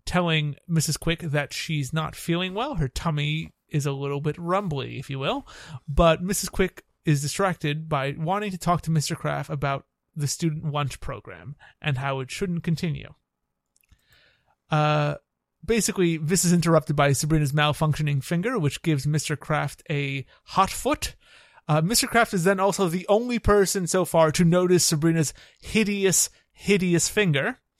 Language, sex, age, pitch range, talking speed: English, male, 30-49, 145-185 Hz, 160 wpm